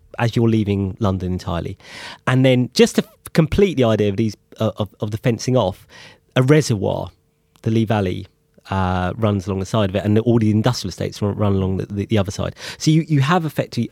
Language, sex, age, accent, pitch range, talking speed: English, male, 30-49, British, 100-145 Hz, 220 wpm